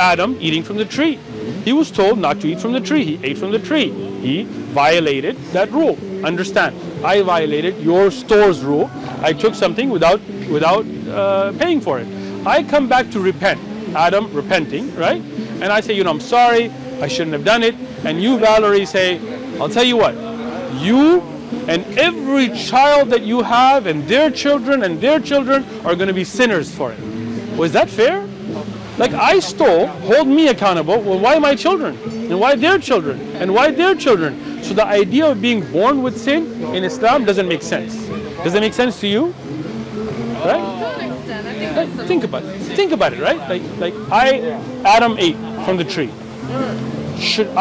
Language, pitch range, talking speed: English, 190-275 Hz, 180 wpm